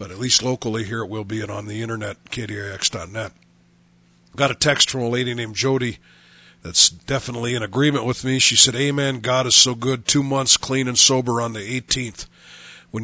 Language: English